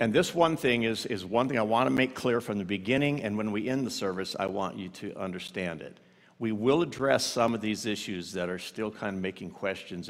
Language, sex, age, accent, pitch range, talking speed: English, male, 60-79, American, 105-135 Hz, 250 wpm